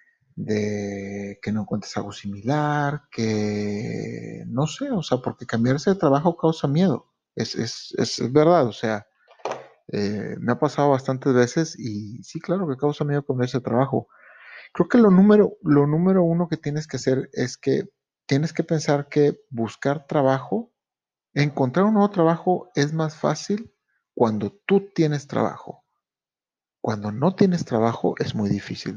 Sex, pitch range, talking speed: male, 110-150 Hz, 155 wpm